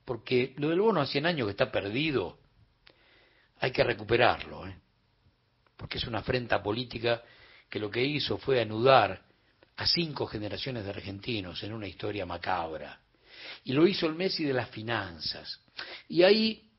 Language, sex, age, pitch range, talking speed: Spanish, male, 60-79, 100-135 Hz, 155 wpm